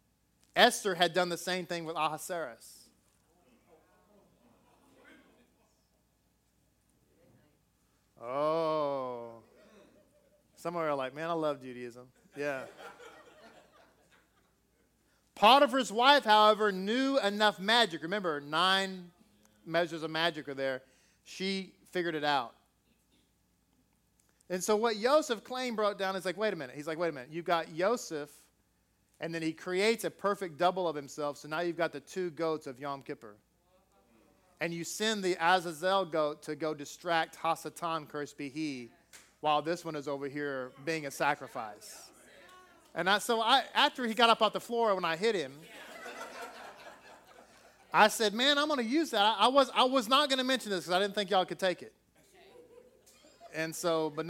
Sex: male